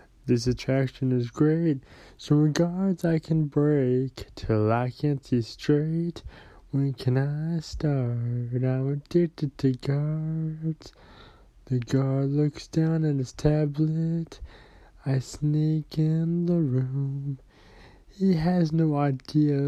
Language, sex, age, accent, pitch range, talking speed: English, male, 20-39, American, 135-165 Hz, 115 wpm